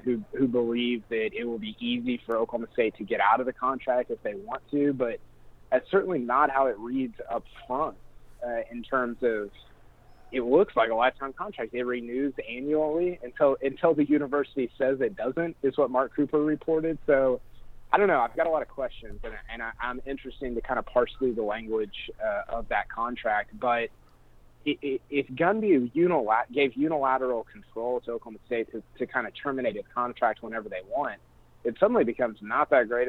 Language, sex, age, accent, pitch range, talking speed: English, male, 30-49, American, 115-145 Hz, 195 wpm